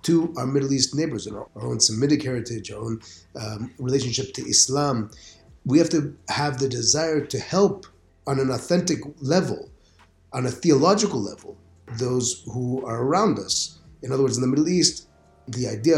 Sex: male